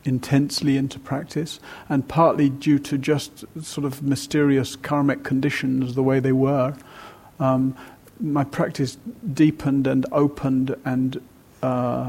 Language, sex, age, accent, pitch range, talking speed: English, male, 40-59, British, 130-145 Hz, 120 wpm